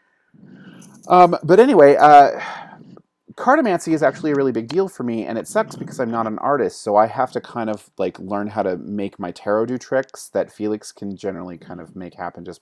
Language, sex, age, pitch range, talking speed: English, male, 30-49, 95-140 Hz, 215 wpm